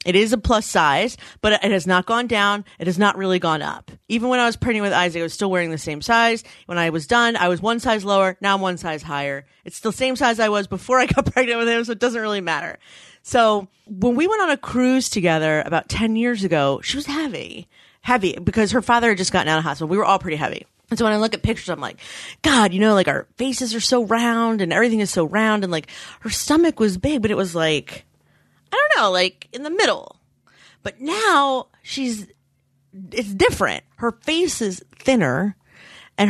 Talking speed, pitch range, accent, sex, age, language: 235 wpm, 190-255 Hz, American, female, 30-49, English